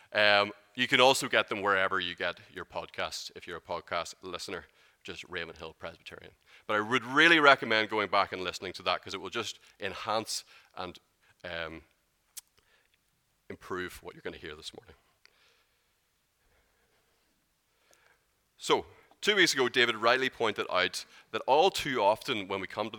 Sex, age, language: male, 30-49, English